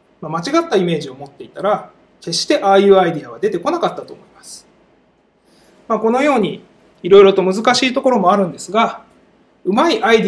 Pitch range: 185-240 Hz